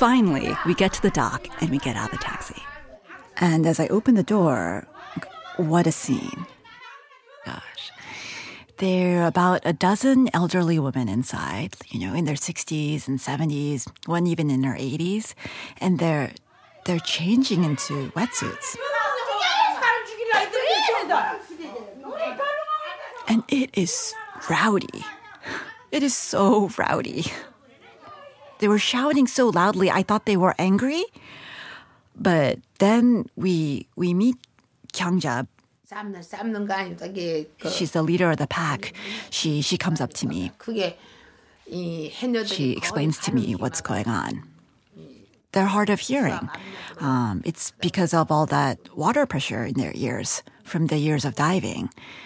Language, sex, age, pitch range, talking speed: English, female, 30-49, 155-230 Hz, 130 wpm